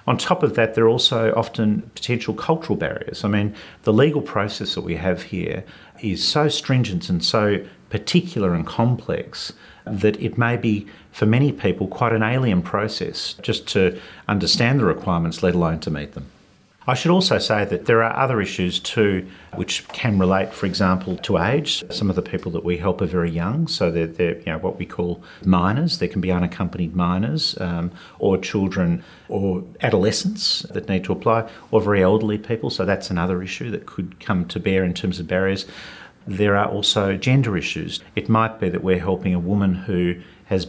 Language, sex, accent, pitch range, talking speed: English, male, Australian, 90-115 Hz, 195 wpm